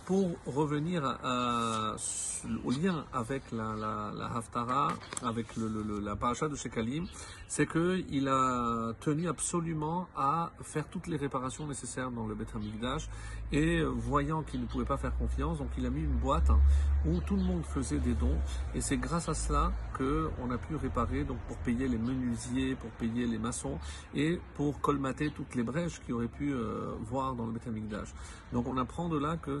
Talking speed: 190 wpm